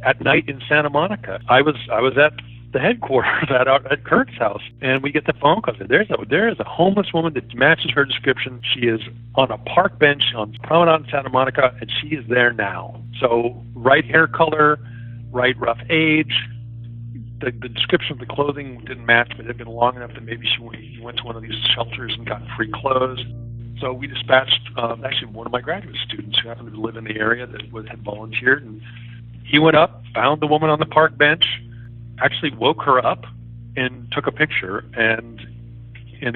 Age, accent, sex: 50-69, American, male